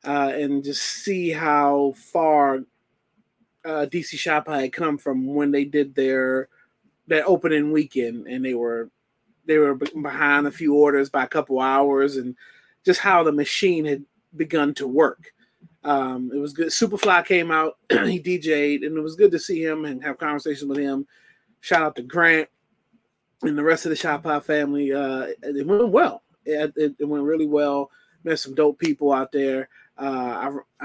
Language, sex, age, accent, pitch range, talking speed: English, male, 30-49, American, 140-170 Hz, 175 wpm